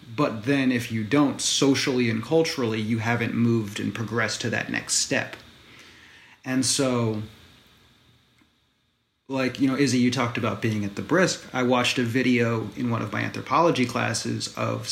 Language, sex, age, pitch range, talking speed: English, male, 30-49, 115-135 Hz, 165 wpm